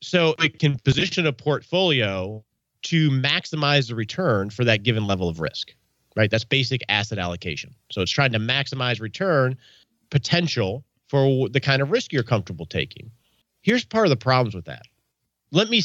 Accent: American